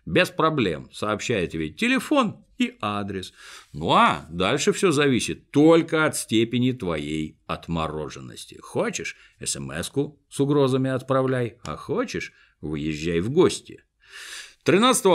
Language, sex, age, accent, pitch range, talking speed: Russian, male, 50-69, native, 90-150 Hz, 110 wpm